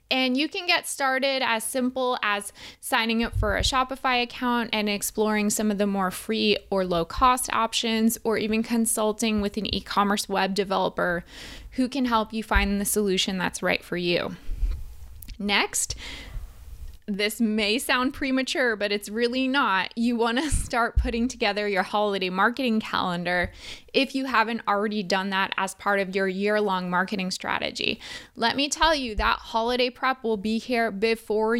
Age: 20-39